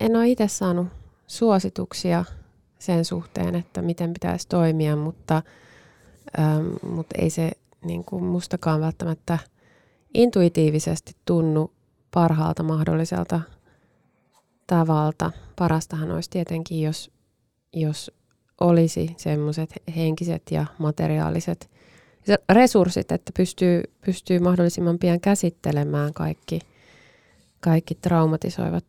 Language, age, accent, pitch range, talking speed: Finnish, 20-39, native, 135-180 Hz, 85 wpm